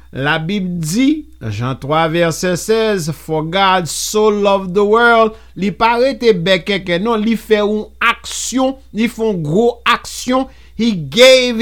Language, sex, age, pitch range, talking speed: English, male, 50-69, 170-235 Hz, 140 wpm